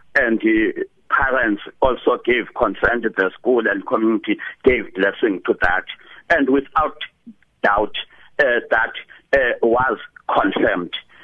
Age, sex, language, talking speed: 60-79, male, English, 125 wpm